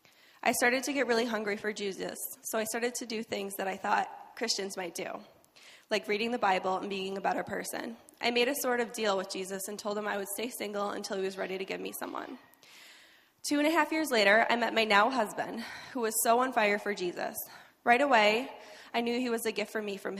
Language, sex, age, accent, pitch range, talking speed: English, female, 10-29, American, 200-240 Hz, 240 wpm